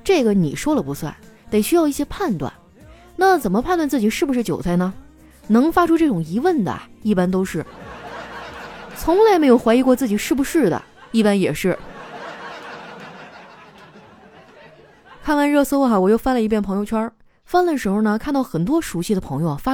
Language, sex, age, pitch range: Chinese, female, 20-39, 190-290 Hz